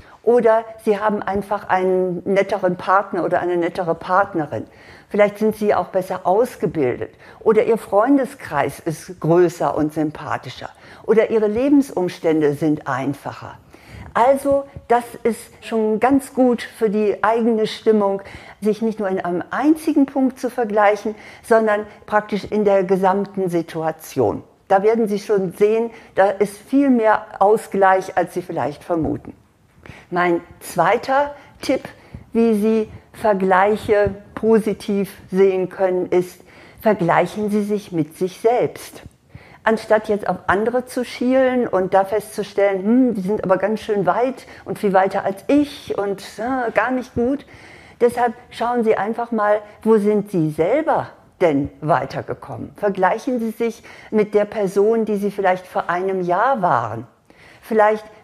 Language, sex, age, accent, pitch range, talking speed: German, female, 50-69, German, 185-225 Hz, 140 wpm